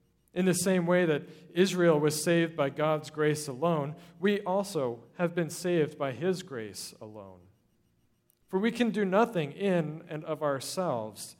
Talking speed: 160 wpm